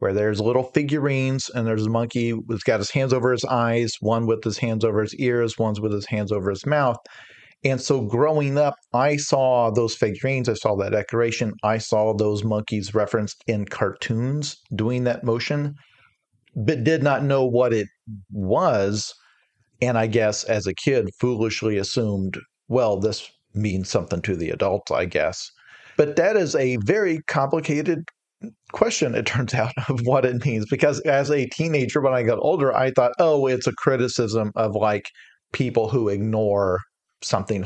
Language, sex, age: English, male, 40-59